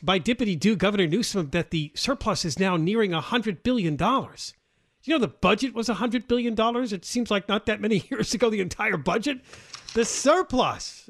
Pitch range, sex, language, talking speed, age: 145-230 Hz, male, English, 190 wpm, 40-59